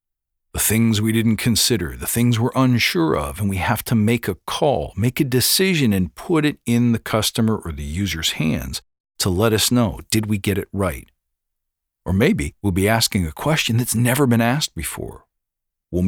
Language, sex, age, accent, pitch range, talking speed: English, male, 50-69, American, 100-125 Hz, 195 wpm